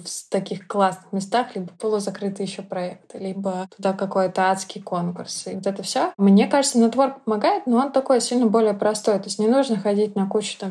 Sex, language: female, Russian